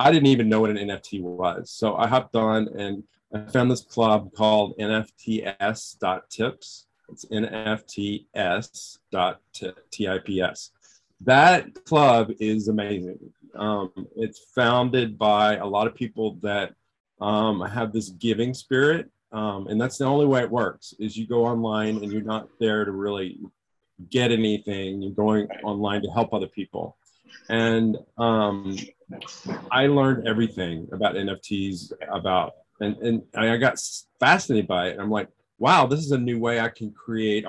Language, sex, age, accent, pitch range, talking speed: English, male, 30-49, American, 100-115 Hz, 145 wpm